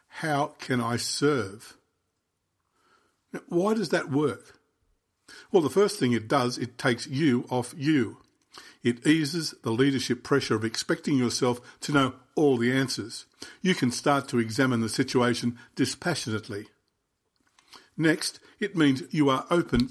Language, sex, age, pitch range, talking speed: English, male, 50-69, 120-150 Hz, 140 wpm